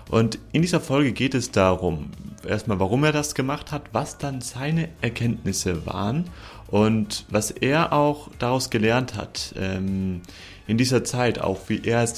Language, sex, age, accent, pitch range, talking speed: German, male, 30-49, German, 100-120 Hz, 165 wpm